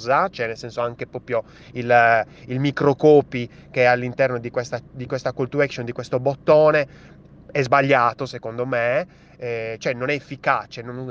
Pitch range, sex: 125-160 Hz, male